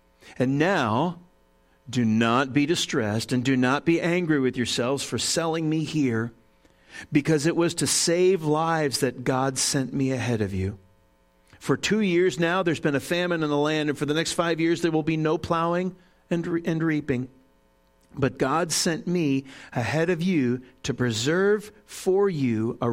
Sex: male